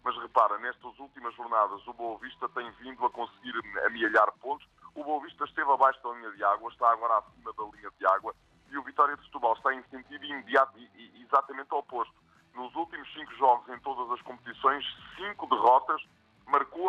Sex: male